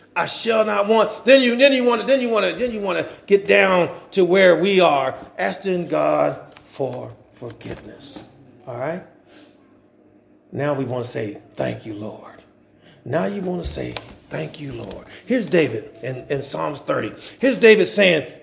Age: 40-59